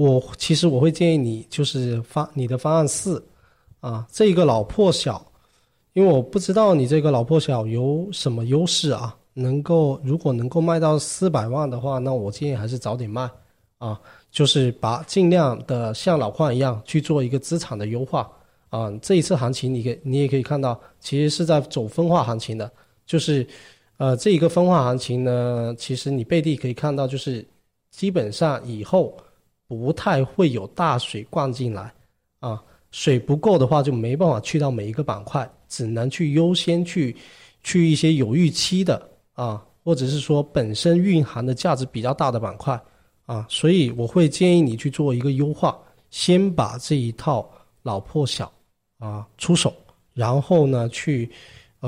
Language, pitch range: Chinese, 120-160 Hz